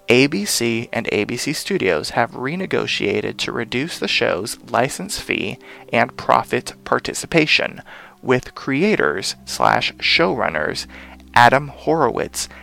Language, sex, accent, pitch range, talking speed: English, male, American, 105-135 Hz, 90 wpm